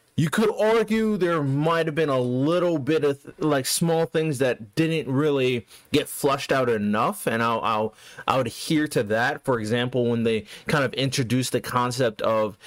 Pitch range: 120-155 Hz